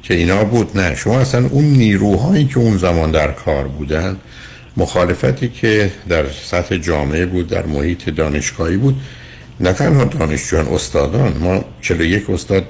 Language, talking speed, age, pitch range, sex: Persian, 150 wpm, 60-79, 75-100 Hz, male